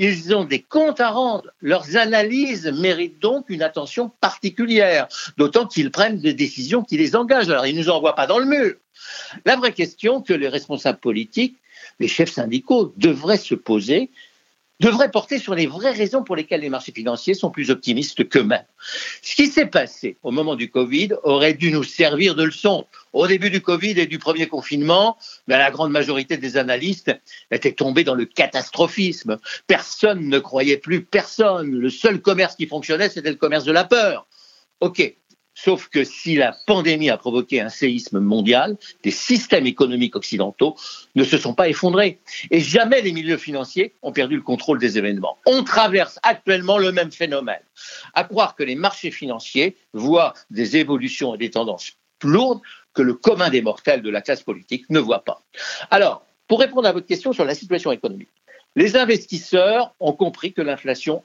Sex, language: male, French